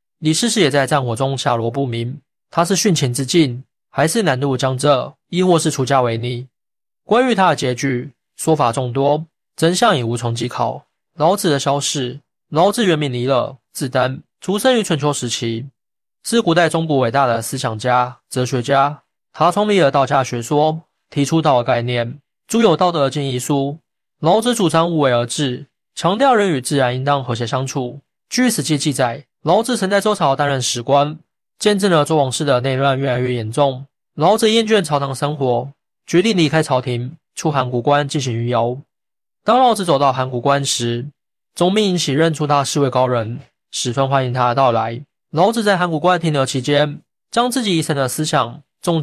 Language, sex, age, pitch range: Chinese, male, 20-39, 125-165 Hz